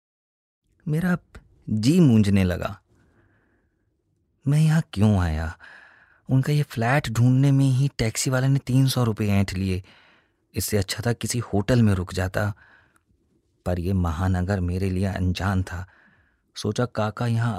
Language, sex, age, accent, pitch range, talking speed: Hindi, male, 30-49, native, 100-145 Hz, 135 wpm